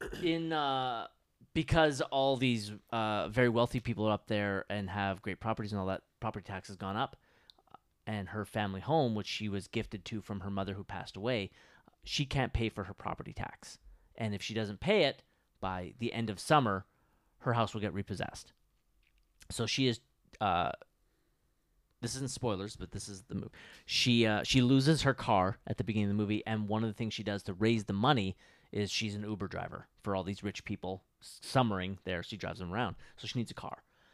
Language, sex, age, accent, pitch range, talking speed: English, male, 30-49, American, 100-120 Hz, 210 wpm